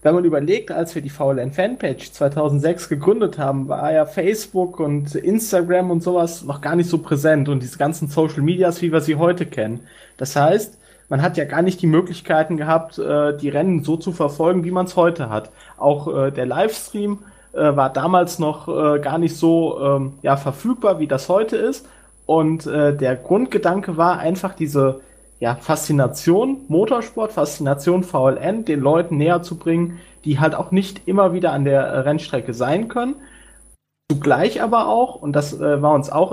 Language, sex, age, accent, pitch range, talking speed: German, male, 20-39, German, 145-185 Hz, 170 wpm